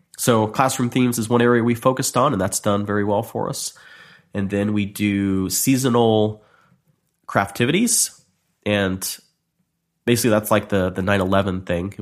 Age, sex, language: 30-49, male, English